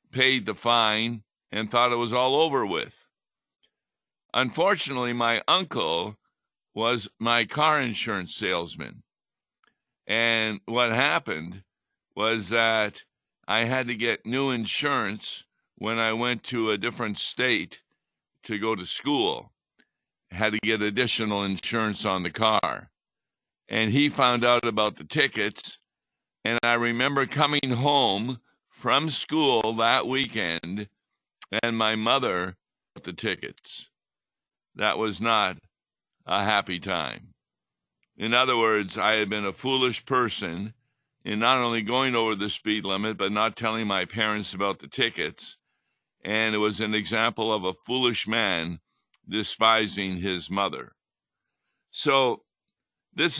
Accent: American